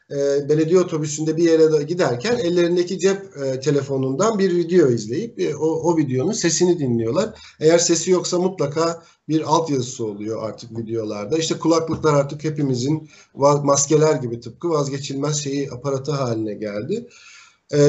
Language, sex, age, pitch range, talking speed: Turkish, male, 50-69, 140-180 Hz, 130 wpm